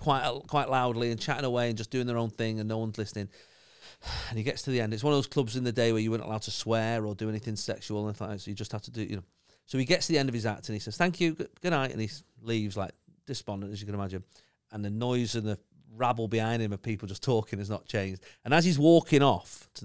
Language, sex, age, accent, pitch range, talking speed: English, male, 40-59, British, 105-155 Hz, 295 wpm